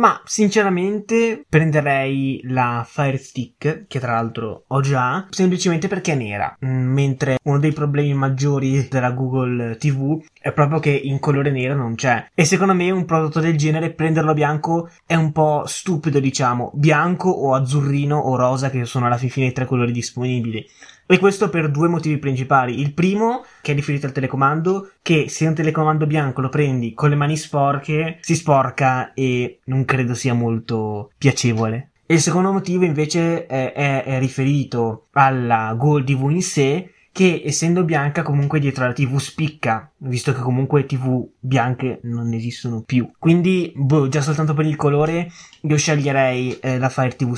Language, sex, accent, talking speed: Italian, male, native, 170 wpm